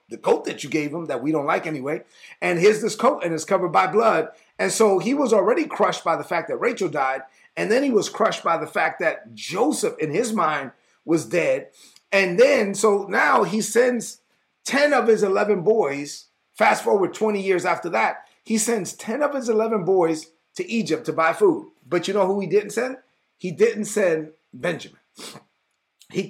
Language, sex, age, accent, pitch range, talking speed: English, male, 40-59, American, 175-240 Hz, 200 wpm